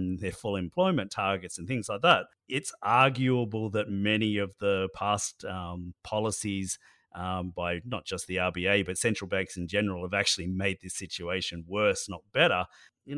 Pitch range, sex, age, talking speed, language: 95-110 Hz, male, 40-59, 170 wpm, English